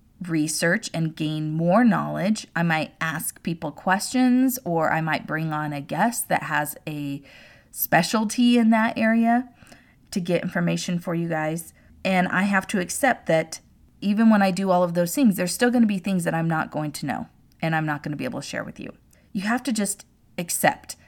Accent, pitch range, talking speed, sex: American, 160-200 Hz, 205 wpm, female